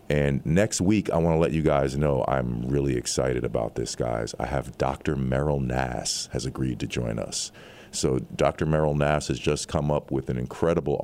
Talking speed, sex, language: 200 wpm, male, English